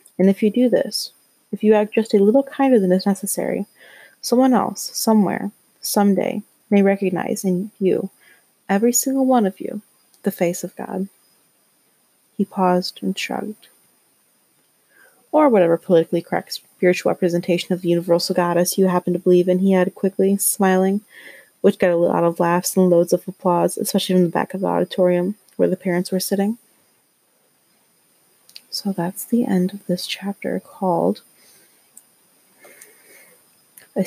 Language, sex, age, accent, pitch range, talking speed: English, female, 30-49, American, 180-215 Hz, 150 wpm